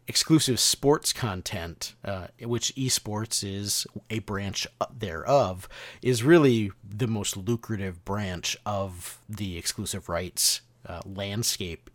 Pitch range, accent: 95-120 Hz, American